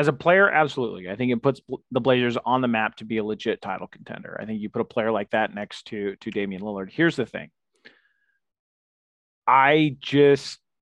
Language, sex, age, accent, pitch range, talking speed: English, male, 30-49, American, 110-145 Hz, 205 wpm